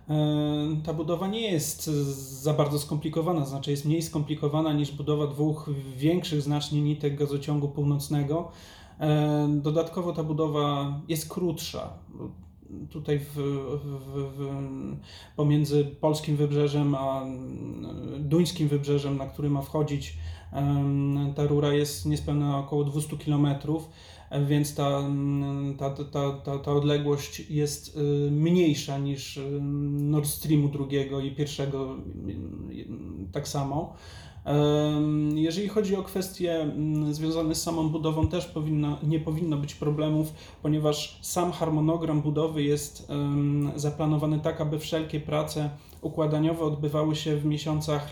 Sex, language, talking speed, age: male, Polish, 105 wpm, 30-49